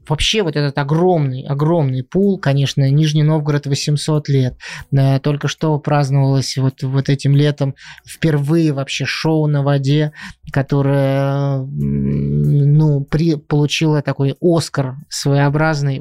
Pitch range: 140-155 Hz